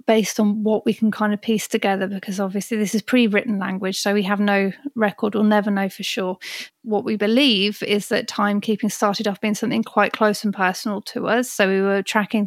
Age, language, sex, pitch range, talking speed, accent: 30-49, English, female, 195-220 Hz, 215 wpm, British